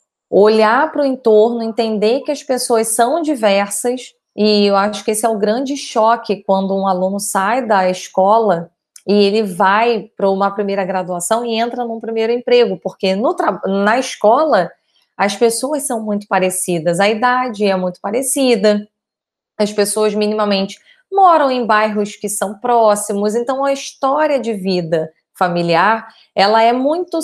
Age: 20-39